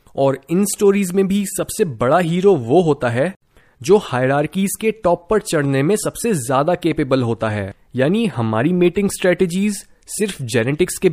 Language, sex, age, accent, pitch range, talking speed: Hindi, male, 20-39, native, 135-185 Hz, 160 wpm